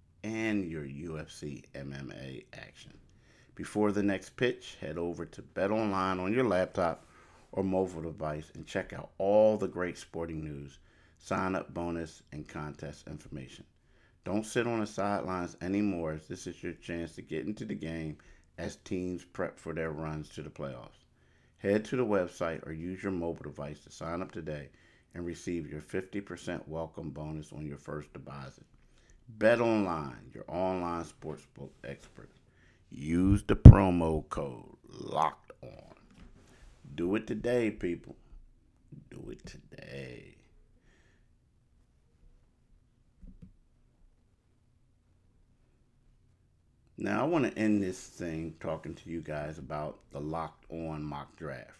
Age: 50-69